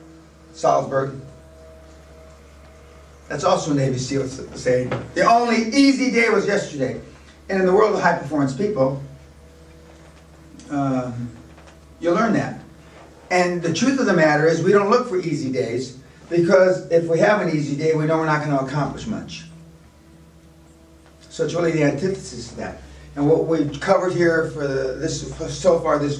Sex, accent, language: male, American, English